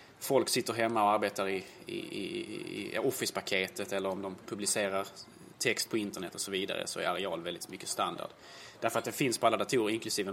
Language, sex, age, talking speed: Swedish, male, 20-39, 190 wpm